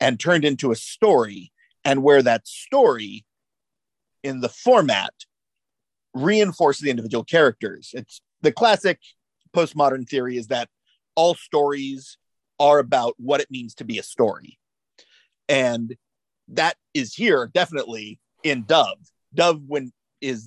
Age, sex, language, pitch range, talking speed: 40-59, male, English, 130-180 Hz, 130 wpm